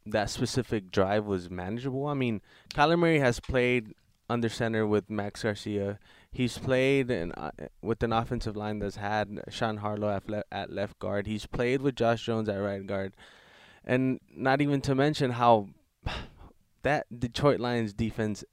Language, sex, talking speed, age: English, male, 160 wpm, 20-39